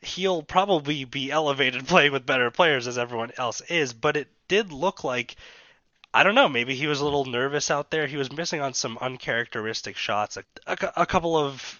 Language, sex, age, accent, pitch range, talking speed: English, male, 20-39, American, 115-150 Hz, 200 wpm